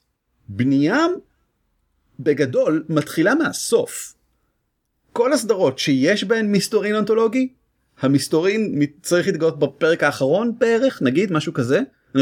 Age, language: 30-49, Hebrew